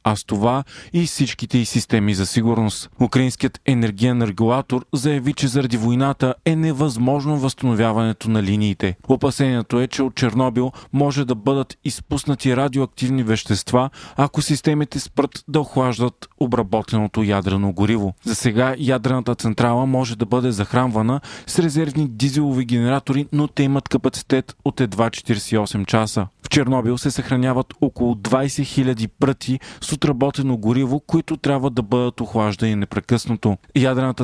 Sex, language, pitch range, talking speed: male, Bulgarian, 115-140 Hz, 135 wpm